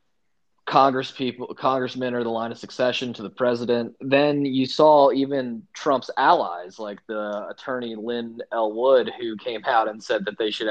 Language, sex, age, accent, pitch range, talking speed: English, male, 20-39, American, 110-140 Hz, 175 wpm